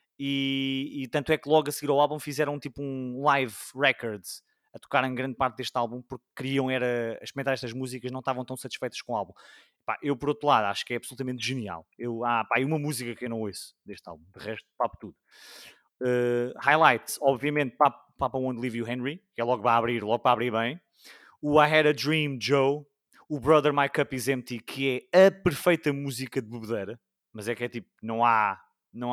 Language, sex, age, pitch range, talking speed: English, male, 20-39, 125-150 Hz, 215 wpm